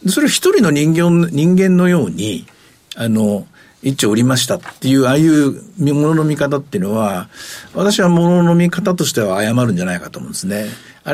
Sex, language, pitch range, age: male, Japanese, 120-175 Hz, 50-69